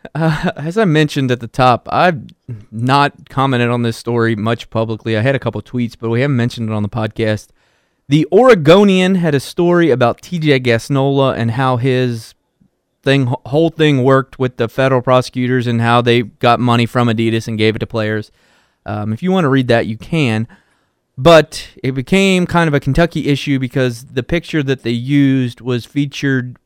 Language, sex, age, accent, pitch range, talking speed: English, male, 20-39, American, 115-140 Hz, 190 wpm